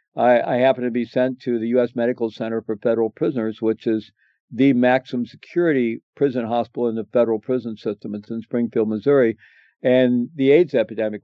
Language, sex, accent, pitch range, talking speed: English, male, American, 110-125 Hz, 175 wpm